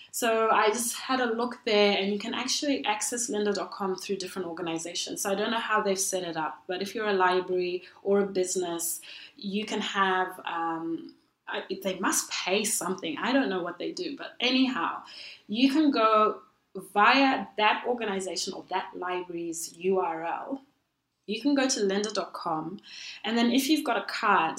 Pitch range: 180-220 Hz